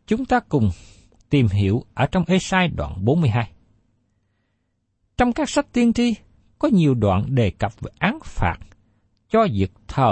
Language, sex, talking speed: Vietnamese, male, 155 wpm